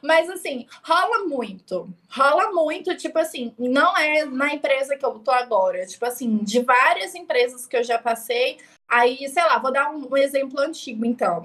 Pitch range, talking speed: 245-320 Hz, 180 wpm